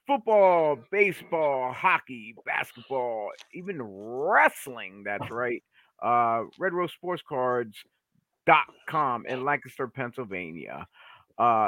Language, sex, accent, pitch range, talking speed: English, male, American, 115-155 Hz, 80 wpm